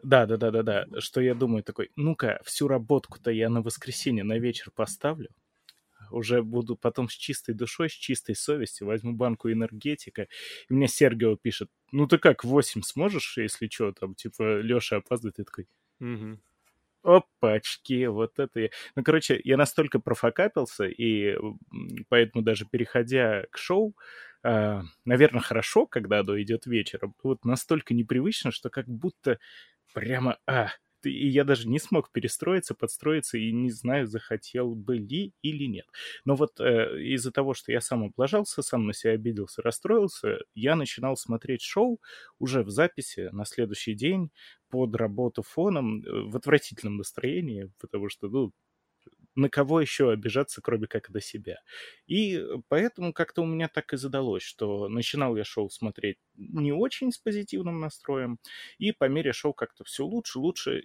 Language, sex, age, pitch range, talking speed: Russian, male, 20-39, 115-145 Hz, 150 wpm